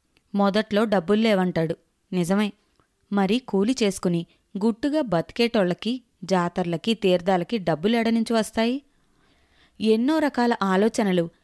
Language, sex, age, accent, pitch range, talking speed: Telugu, female, 20-39, native, 190-230 Hz, 80 wpm